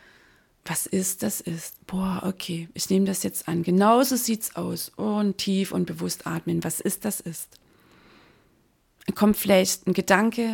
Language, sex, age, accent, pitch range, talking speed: German, female, 30-49, German, 180-220 Hz, 160 wpm